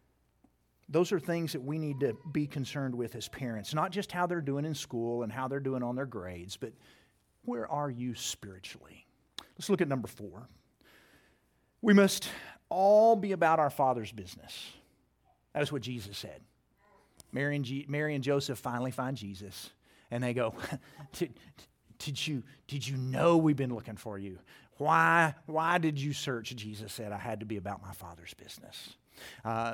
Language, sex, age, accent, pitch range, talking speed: English, male, 40-59, American, 110-150 Hz, 175 wpm